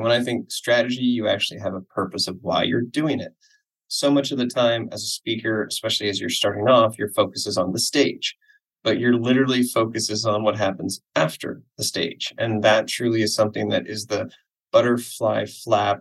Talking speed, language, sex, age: 200 wpm, English, male, 20-39